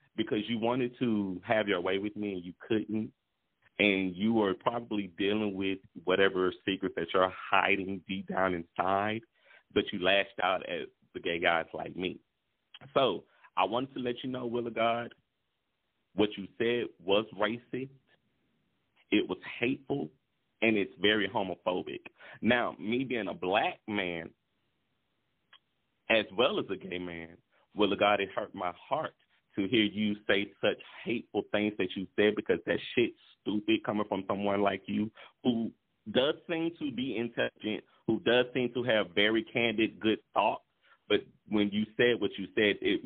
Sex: male